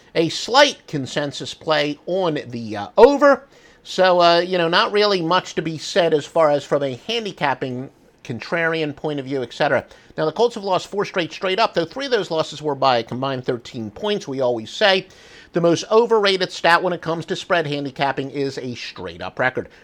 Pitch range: 150-220 Hz